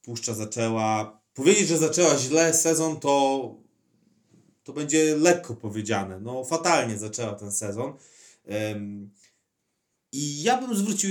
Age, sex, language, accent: 30-49, male, Polish, native